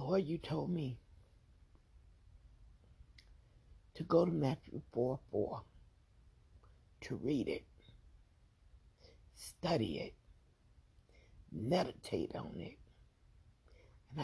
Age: 60-79